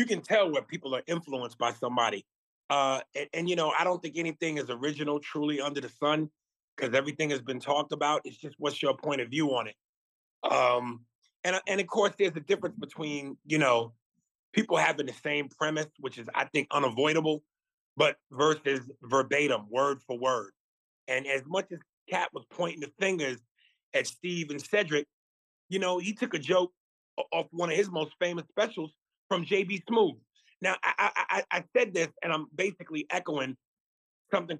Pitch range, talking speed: 145-215 Hz, 185 wpm